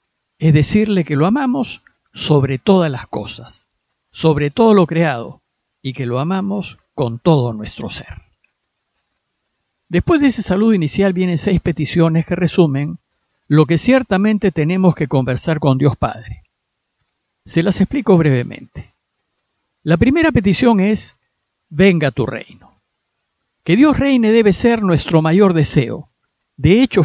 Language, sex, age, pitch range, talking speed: Spanish, male, 50-69, 145-200 Hz, 135 wpm